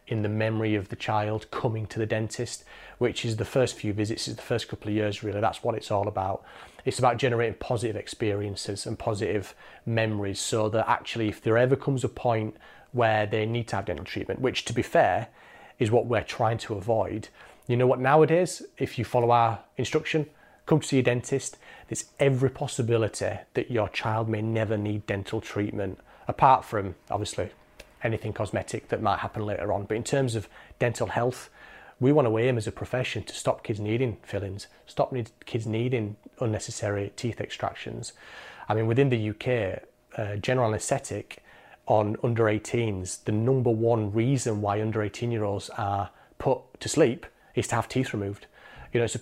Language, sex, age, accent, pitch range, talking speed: English, male, 30-49, British, 105-125 Hz, 190 wpm